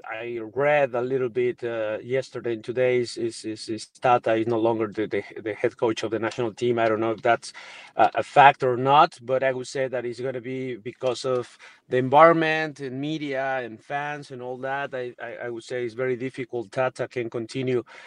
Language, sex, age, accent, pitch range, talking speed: English, male, 30-49, Mexican, 125-145 Hz, 220 wpm